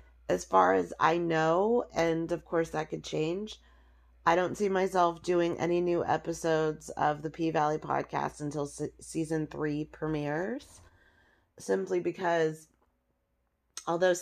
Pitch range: 150-175 Hz